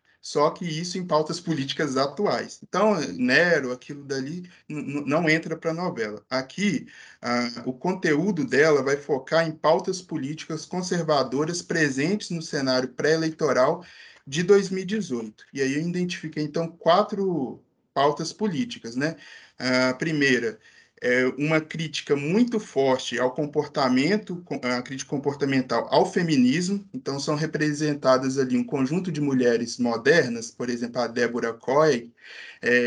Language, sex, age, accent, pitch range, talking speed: Portuguese, male, 20-39, Brazilian, 135-180 Hz, 130 wpm